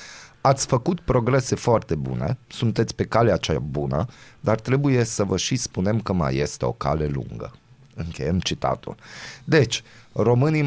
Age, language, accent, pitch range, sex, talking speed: 30-49, Romanian, native, 90-115 Hz, male, 145 wpm